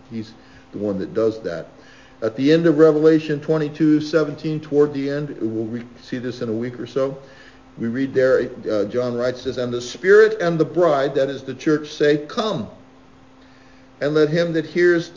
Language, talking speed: English, 190 wpm